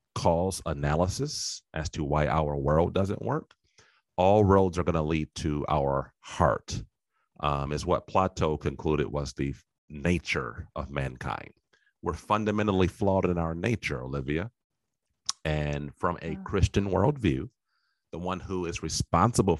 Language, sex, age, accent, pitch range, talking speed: English, male, 40-59, American, 75-95 Hz, 140 wpm